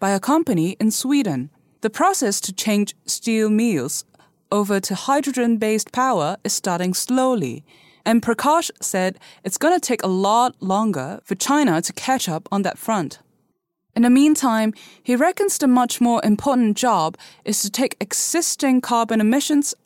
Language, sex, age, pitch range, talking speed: English, female, 20-39, 195-260 Hz, 155 wpm